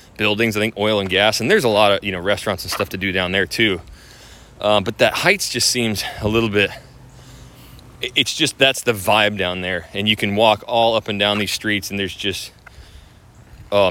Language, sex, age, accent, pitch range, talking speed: English, male, 20-39, American, 100-120 Hz, 220 wpm